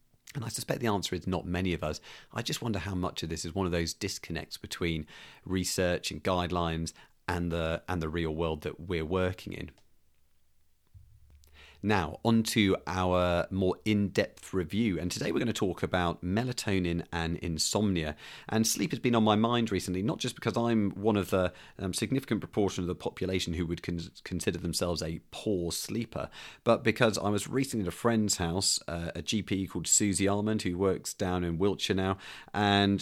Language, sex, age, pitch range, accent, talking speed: English, male, 40-59, 85-100 Hz, British, 185 wpm